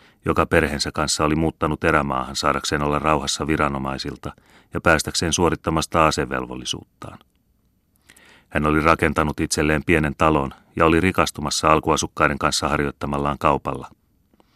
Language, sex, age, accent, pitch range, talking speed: Finnish, male, 30-49, native, 75-80 Hz, 110 wpm